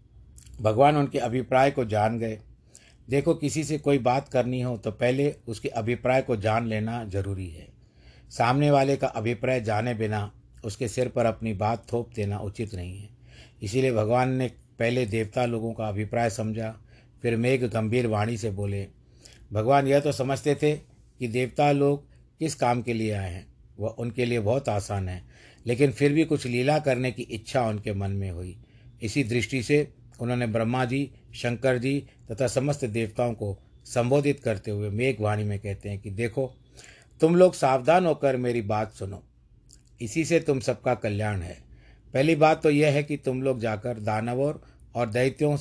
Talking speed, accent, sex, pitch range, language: 170 wpm, native, male, 110-135 Hz, Hindi